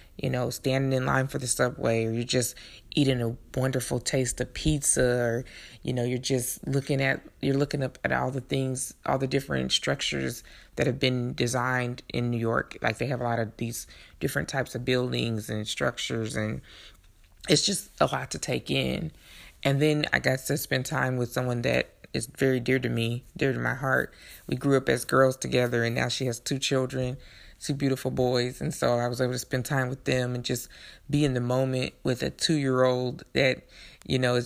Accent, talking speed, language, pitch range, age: American, 210 wpm, English, 120-135 Hz, 20-39